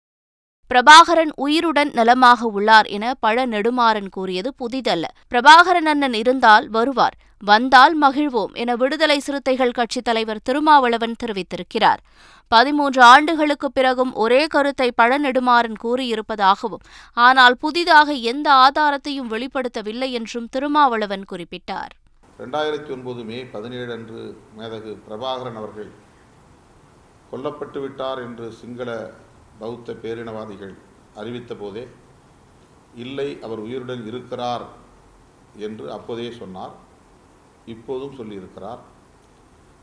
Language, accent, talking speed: Tamil, native, 50 wpm